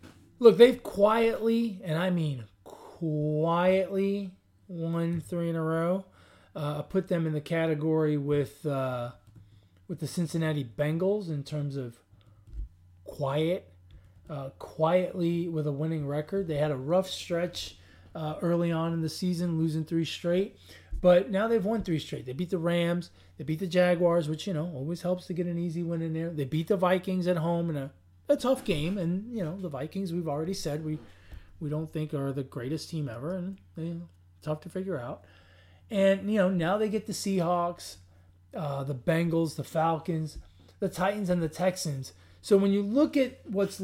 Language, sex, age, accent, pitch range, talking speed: English, male, 20-39, American, 145-185 Hz, 185 wpm